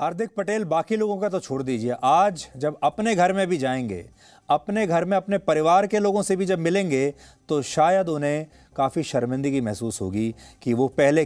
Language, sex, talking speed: English, male, 190 wpm